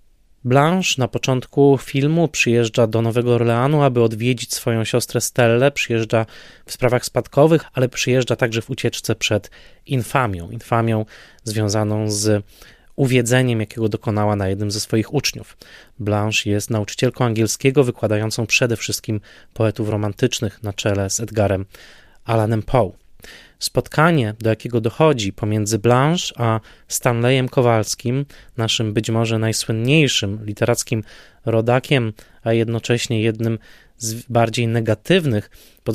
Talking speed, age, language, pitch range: 120 wpm, 20-39, Polish, 110-125 Hz